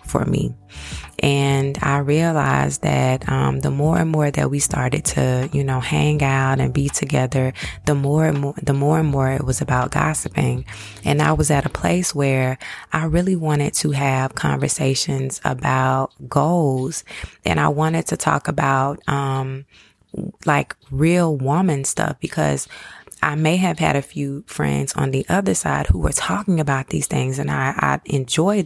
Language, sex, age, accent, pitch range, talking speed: English, female, 20-39, American, 130-150 Hz, 170 wpm